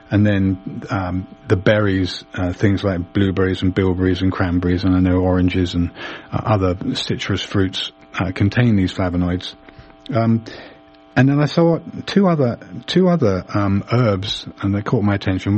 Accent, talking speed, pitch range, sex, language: British, 160 wpm, 95-120 Hz, male, English